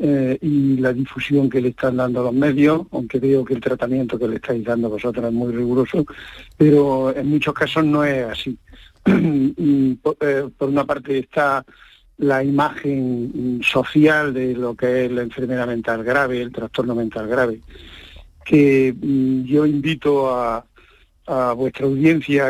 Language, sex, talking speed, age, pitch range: Spanish, male, 150 wpm, 50-69, 125-145 Hz